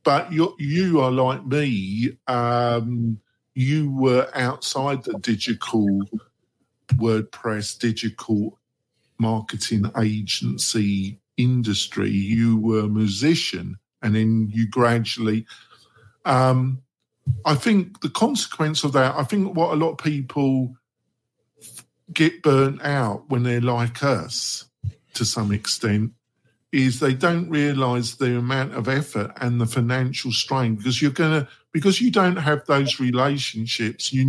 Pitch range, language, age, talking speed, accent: 115-145 Hz, English, 50-69, 125 wpm, British